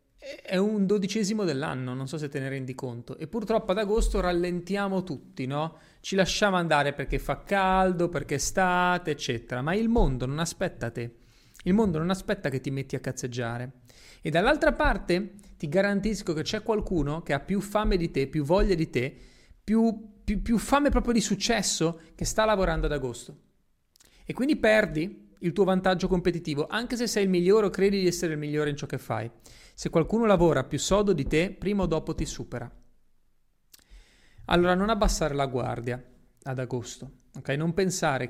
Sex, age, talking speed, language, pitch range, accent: male, 30-49, 185 wpm, Italian, 140-195 Hz, native